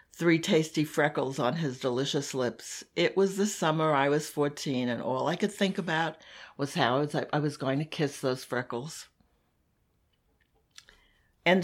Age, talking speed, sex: 60-79, 155 wpm, female